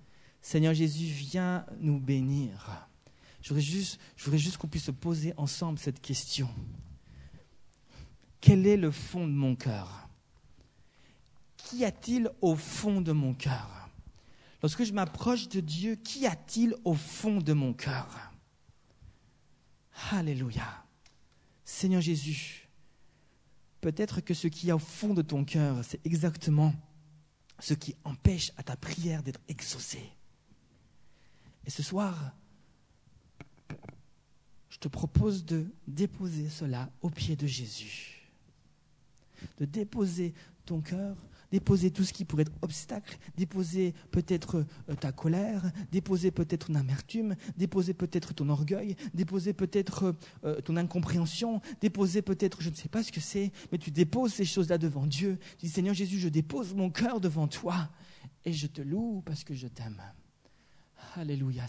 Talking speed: 135 wpm